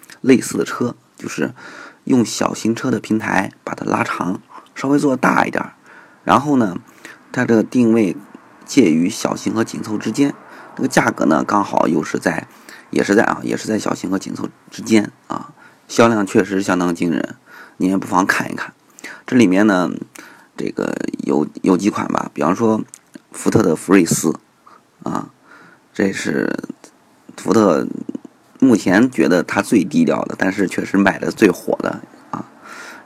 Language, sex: Chinese, male